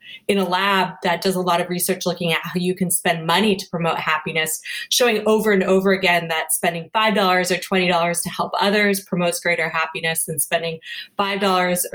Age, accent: 20-39, American